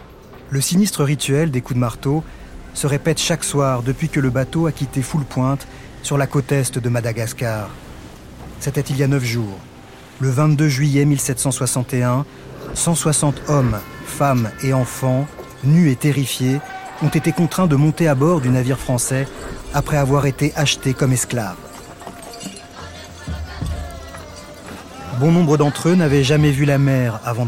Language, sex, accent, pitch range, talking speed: French, male, French, 120-150 Hz, 150 wpm